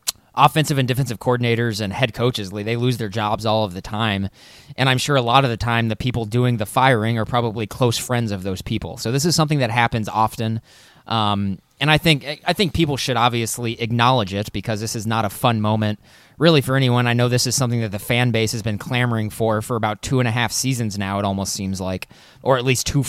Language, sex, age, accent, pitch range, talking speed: English, male, 20-39, American, 110-130 Hz, 240 wpm